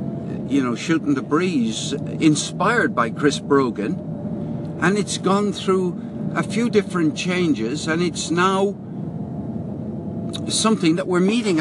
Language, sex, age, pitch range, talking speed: English, male, 60-79, 140-185 Hz, 125 wpm